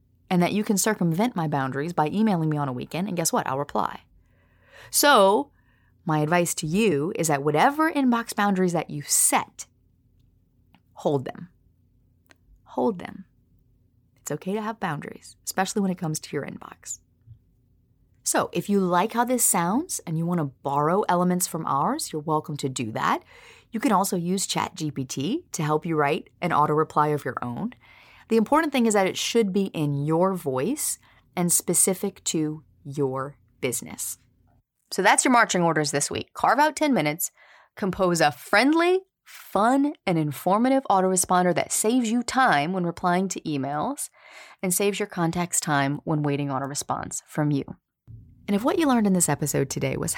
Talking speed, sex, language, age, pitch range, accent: 170 wpm, female, English, 30-49, 145-215 Hz, American